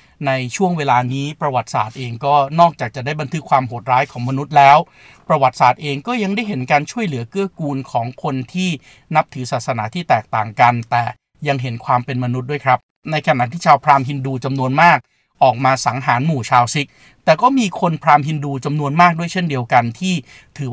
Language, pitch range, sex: Thai, 125-155 Hz, male